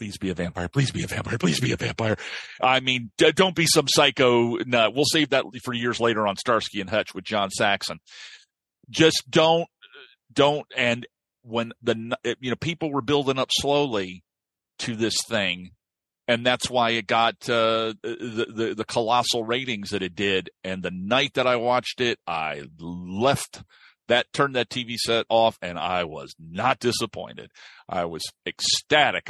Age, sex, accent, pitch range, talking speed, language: 40-59, male, American, 100-130 Hz, 175 wpm, English